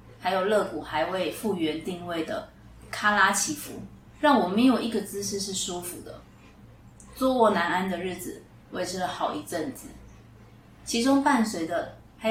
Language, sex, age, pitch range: Chinese, female, 20-39, 175-225 Hz